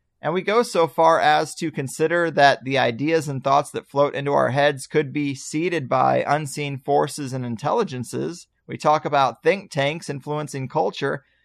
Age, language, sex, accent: 30-49, English, male, American